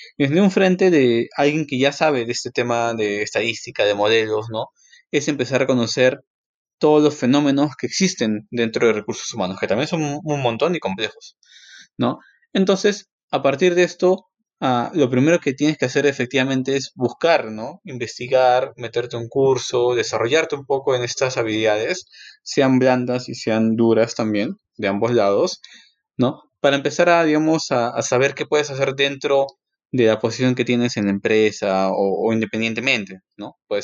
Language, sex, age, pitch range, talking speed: Spanish, male, 20-39, 115-155 Hz, 170 wpm